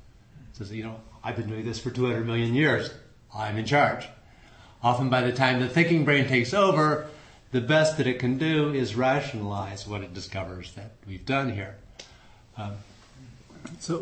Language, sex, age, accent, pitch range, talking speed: English, male, 50-69, American, 110-140 Hz, 175 wpm